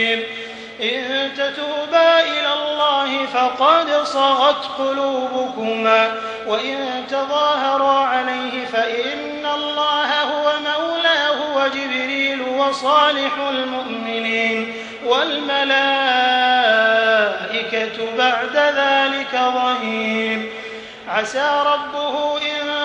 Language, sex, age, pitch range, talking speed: English, male, 30-49, 250-285 Hz, 65 wpm